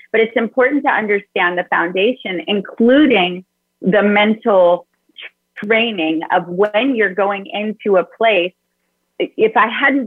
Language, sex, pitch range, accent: English, female, 190-240 Hz, American